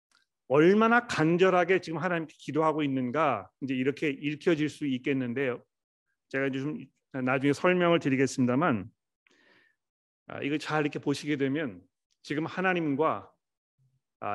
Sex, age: male, 40-59